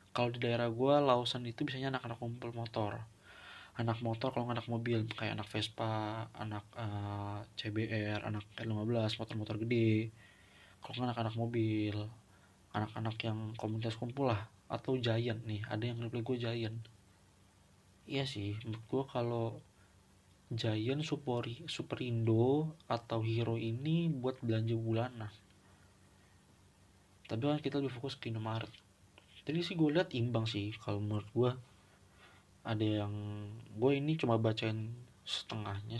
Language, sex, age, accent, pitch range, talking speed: Indonesian, male, 20-39, native, 100-120 Hz, 130 wpm